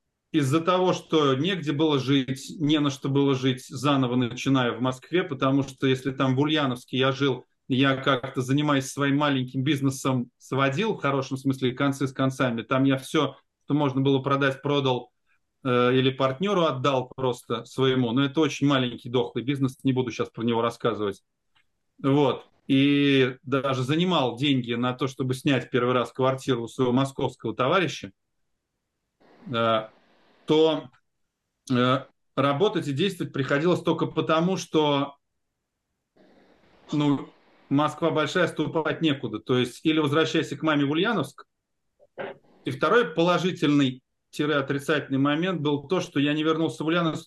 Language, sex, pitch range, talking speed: Russian, male, 130-155 Hz, 140 wpm